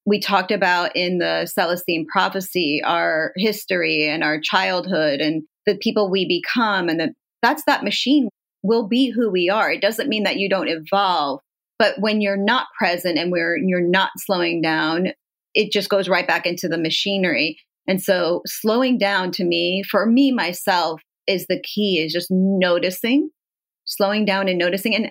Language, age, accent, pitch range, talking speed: English, 30-49, American, 175-215 Hz, 175 wpm